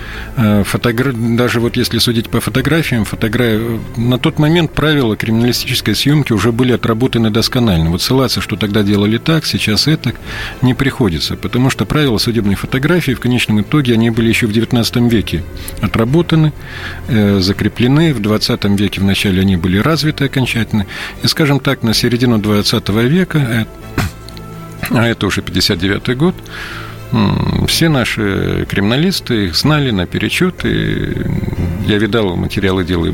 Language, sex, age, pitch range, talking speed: Russian, male, 40-59, 100-130 Hz, 135 wpm